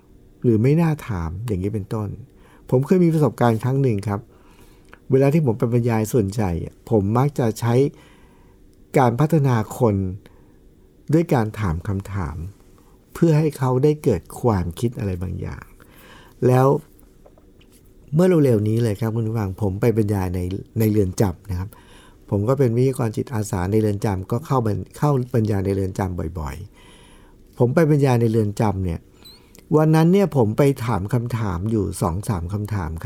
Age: 60-79